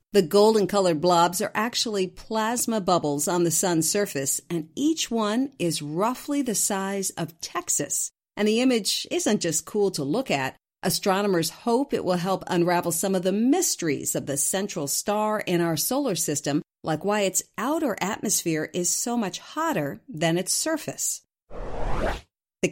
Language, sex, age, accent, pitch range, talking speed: English, female, 50-69, American, 170-235 Hz, 160 wpm